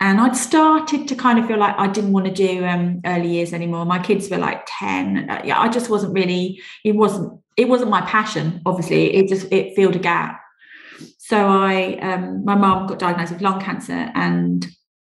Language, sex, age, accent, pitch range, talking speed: English, female, 30-49, British, 175-220 Hz, 205 wpm